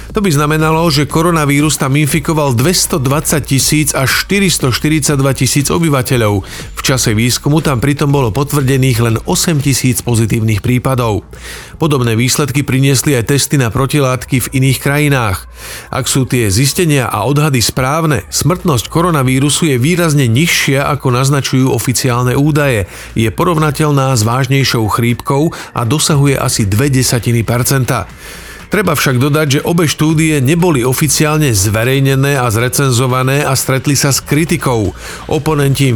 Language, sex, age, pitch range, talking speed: Slovak, male, 40-59, 120-150 Hz, 130 wpm